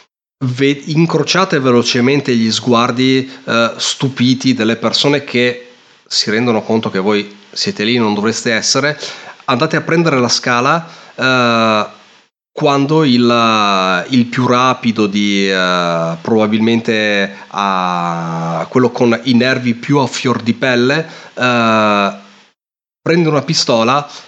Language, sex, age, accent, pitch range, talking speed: Italian, male, 30-49, native, 110-140 Hz, 120 wpm